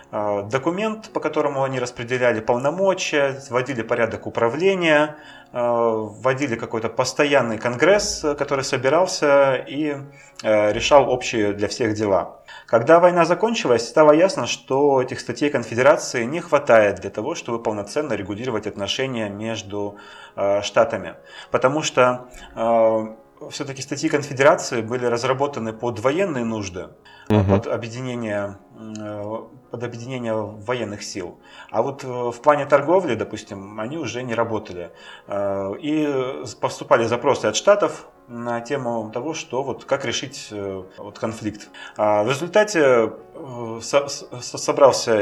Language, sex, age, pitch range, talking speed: Russian, male, 30-49, 110-145 Hz, 110 wpm